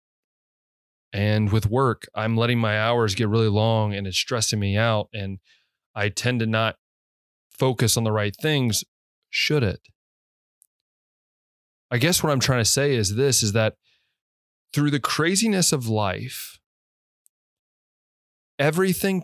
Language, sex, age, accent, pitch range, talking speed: English, male, 20-39, American, 105-125 Hz, 135 wpm